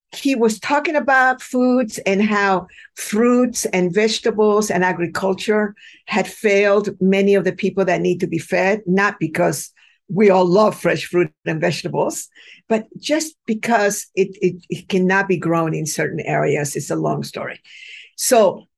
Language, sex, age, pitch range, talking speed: English, female, 50-69, 190-240 Hz, 155 wpm